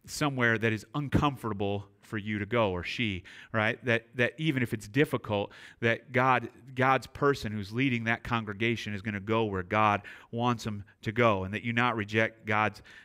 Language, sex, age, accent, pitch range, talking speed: English, male, 30-49, American, 105-130 Hz, 190 wpm